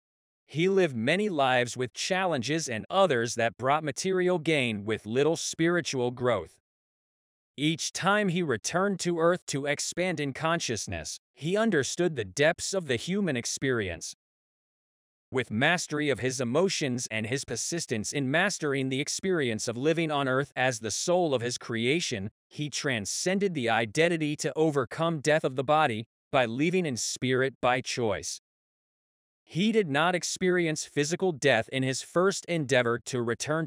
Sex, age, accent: male, 30-49, American